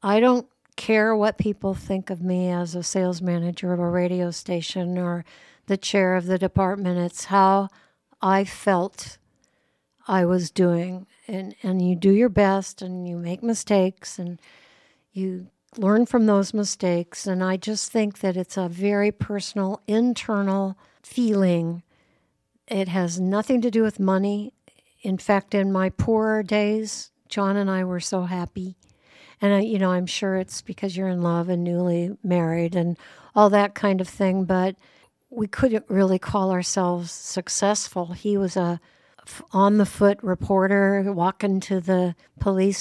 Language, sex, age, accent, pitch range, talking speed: English, female, 60-79, American, 185-205 Hz, 155 wpm